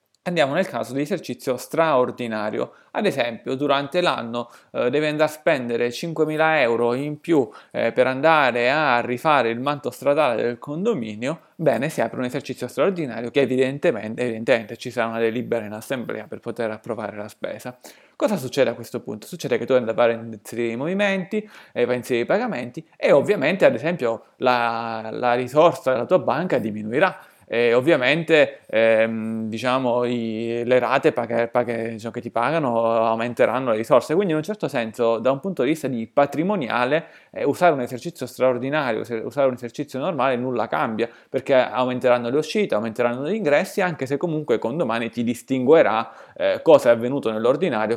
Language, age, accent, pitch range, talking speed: Italian, 30-49, native, 115-150 Hz, 170 wpm